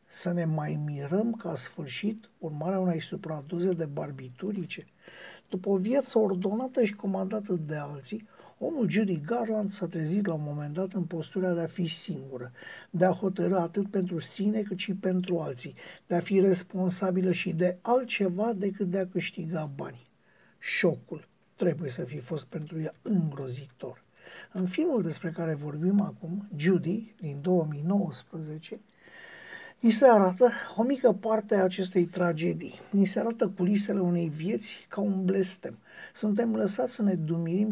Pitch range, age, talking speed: 165-200 Hz, 60-79, 155 wpm